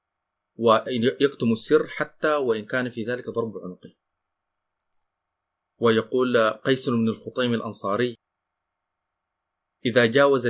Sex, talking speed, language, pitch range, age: male, 90 wpm, Arabic, 105-125 Hz, 30-49